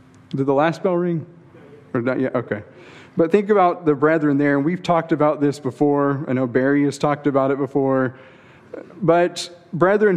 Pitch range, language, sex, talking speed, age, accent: 130-155 Hz, English, male, 185 wpm, 40-59, American